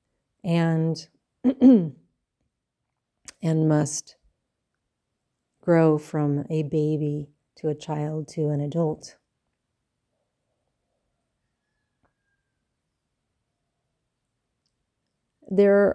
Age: 40-59